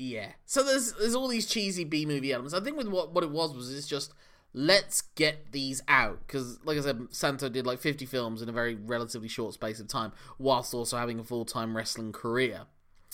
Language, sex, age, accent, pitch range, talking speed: English, male, 20-39, British, 115-150 Hz, 225 wpm